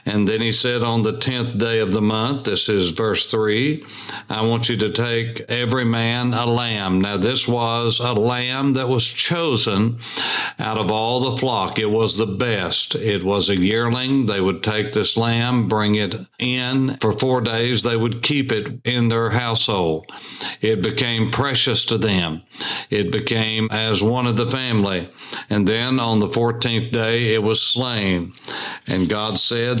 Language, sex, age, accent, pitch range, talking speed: English, male, 60-79, American, 110-120 Hz, 175 wpm